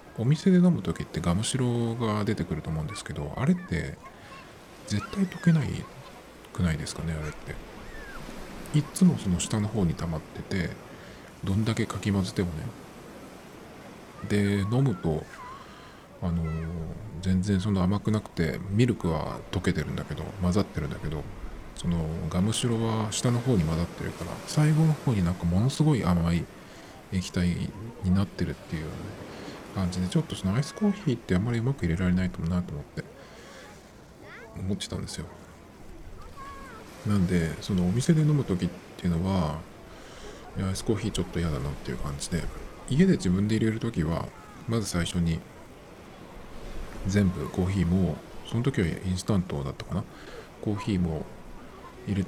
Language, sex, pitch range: Japanese, male, 90-120 Hz